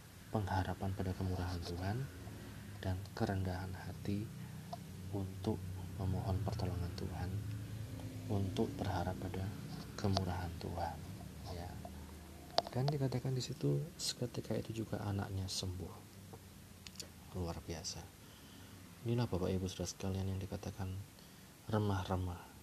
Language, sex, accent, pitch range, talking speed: Indonesian, male, native, 95-105 Hz, 95 wpm